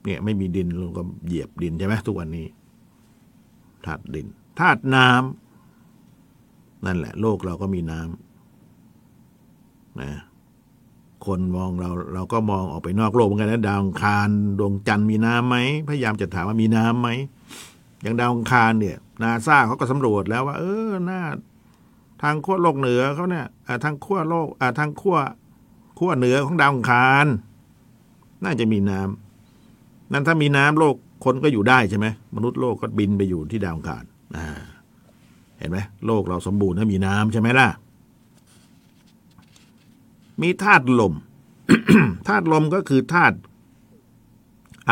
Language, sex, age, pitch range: Thai, male, 60-79, 100-140 Hz